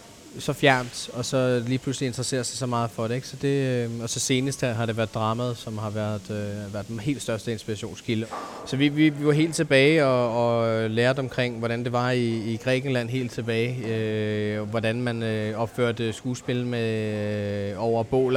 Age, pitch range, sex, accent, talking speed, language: 20-39, 110-130 Hz, male, native, 200 wpm, Danish